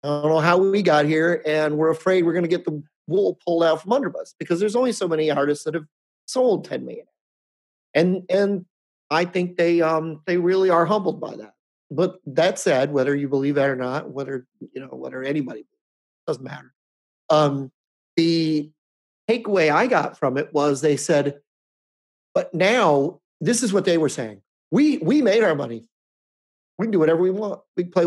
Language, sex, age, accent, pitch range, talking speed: English, male, 30-49, American, 145-185 Hz, 190 wpm